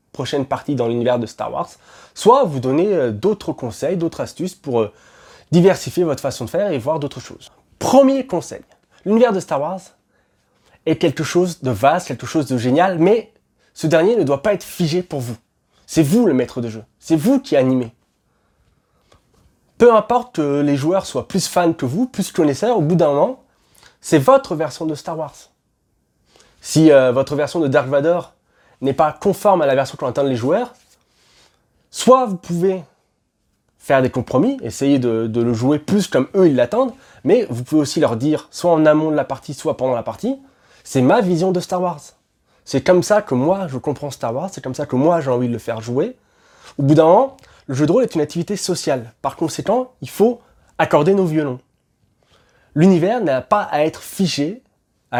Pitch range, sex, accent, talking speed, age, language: 130-185 Hz, male, French, 195 wpm, 20-39, French